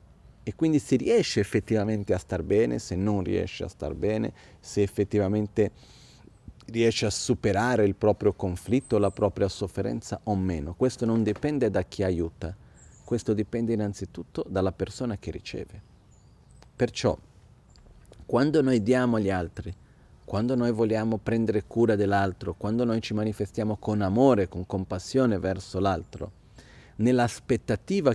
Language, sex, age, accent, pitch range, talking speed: Italian, male, 40-59, native, 100-120 Hz, 135 wpm